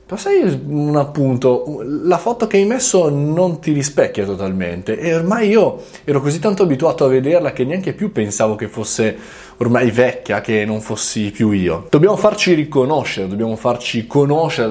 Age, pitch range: 20-39, 110-155 Hz